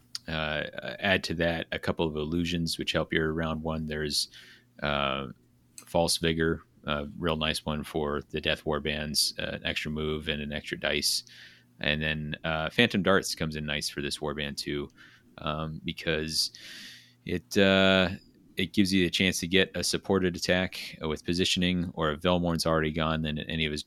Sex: male